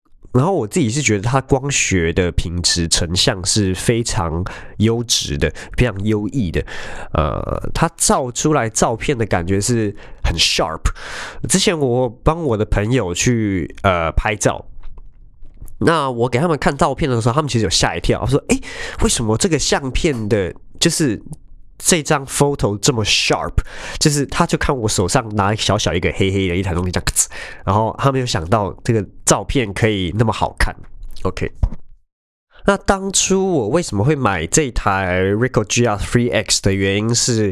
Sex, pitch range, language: male, 95-135 Hz, Chinese